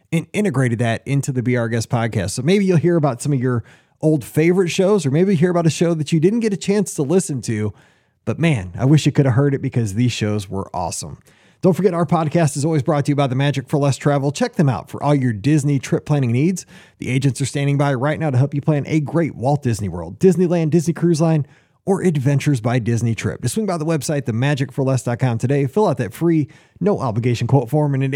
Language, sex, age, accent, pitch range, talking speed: English, male, 30-49, American, 130-170 Hz, 245 wpm